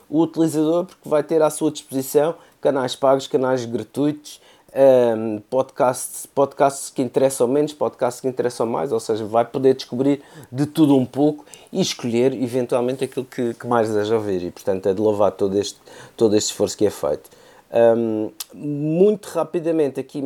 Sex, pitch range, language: male, 120-155 Hz, Portuguese